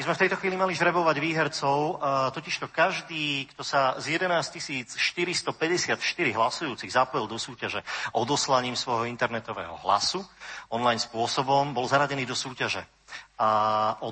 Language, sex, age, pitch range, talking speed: Slovak, male, 40-59, 115-140 Hz, 135 wpm